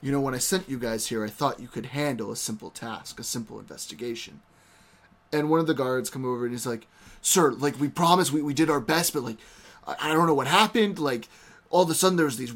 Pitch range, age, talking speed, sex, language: 125-170 Hz, 20-39, 255 wpm, male, English